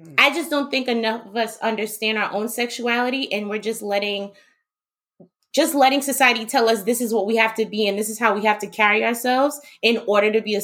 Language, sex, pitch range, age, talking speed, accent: English, female, 200-240 Hz, 20-39, 230 wpm, American